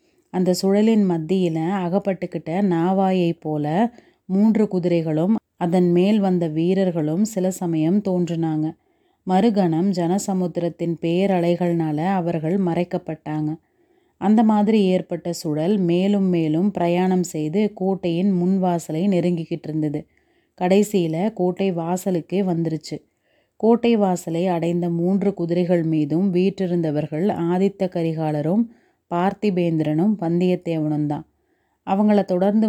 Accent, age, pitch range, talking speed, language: native, 30-49, 165-195 Hz, 95 wpm, Tamil